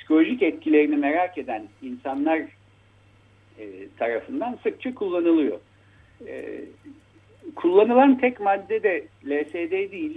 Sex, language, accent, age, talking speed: male, Turkish, native, 60-79, 95 wpm